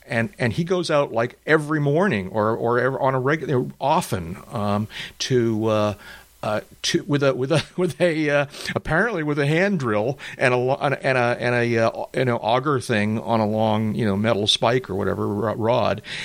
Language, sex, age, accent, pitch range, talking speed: English, male, 50-69, American, 105-140 Hz, 195 wpm